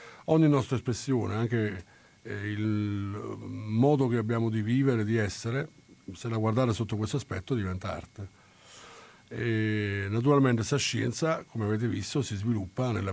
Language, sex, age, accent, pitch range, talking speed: Italian, male, 50-69, native, 100-125 Hz, 135 wpm